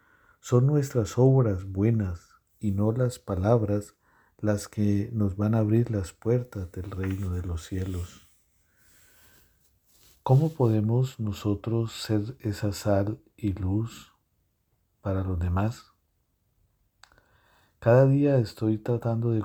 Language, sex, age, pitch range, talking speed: English, male, 50-69, 90-105 Hz, 115 wpm